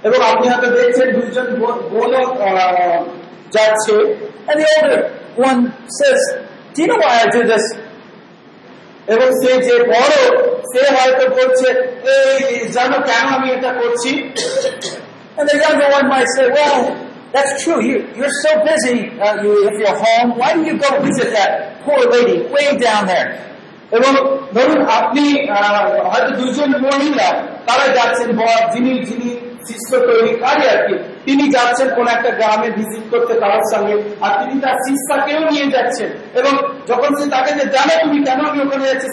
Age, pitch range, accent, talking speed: 50-69, 230-280 Hz, native, 60 wpm